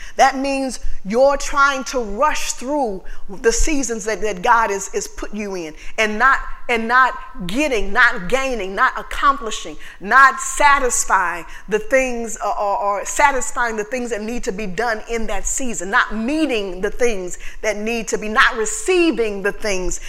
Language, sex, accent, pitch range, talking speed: English, female, American, 185-265 Hz, 165 wpm